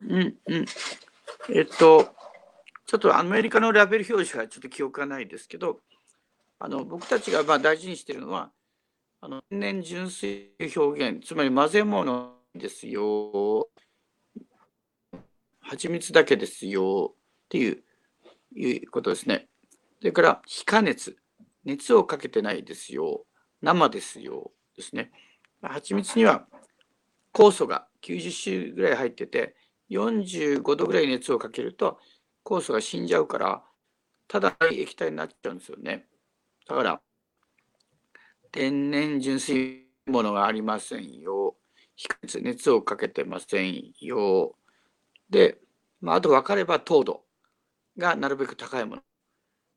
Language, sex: Japanese, male